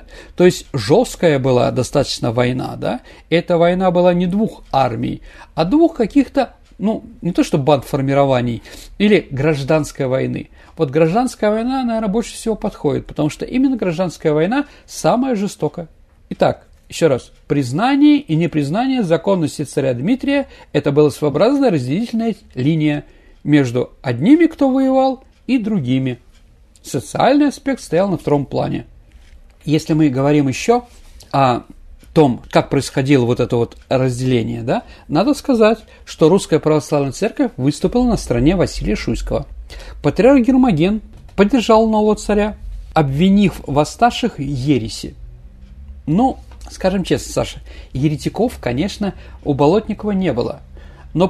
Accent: native